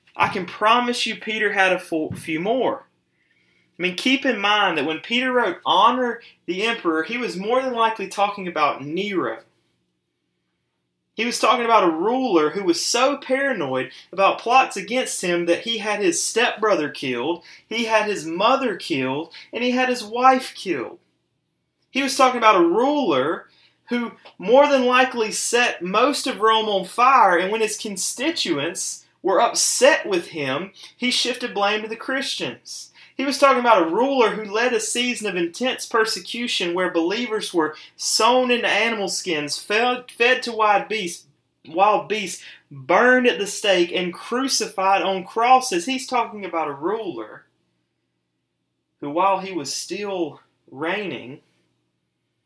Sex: male